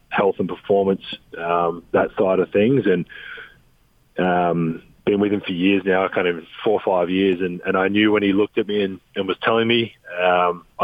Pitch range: 90-115 Hz